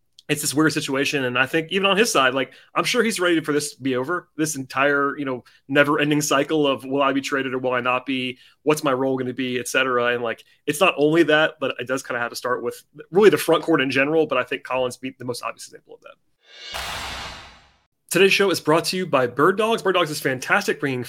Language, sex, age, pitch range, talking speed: English, male, 30-49, 135-175 Hz, 260 wpm